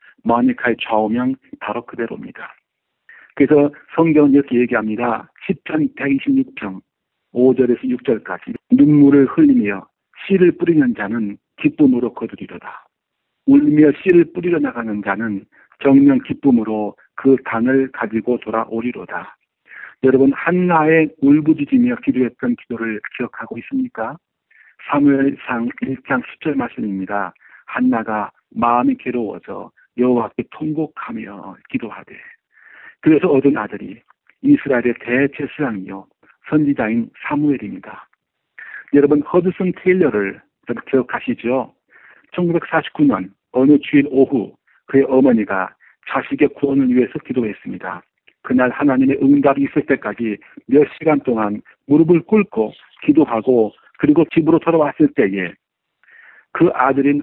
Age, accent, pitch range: 50-69, native, 120-180 Hz